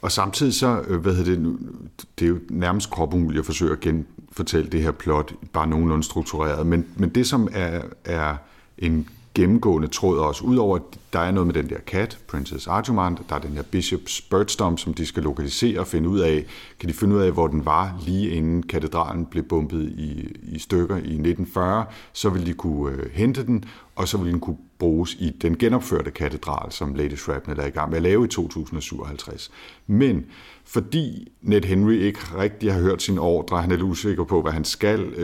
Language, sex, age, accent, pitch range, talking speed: Danish, male, 50-69, native, 80-100 Hz, 205 wpm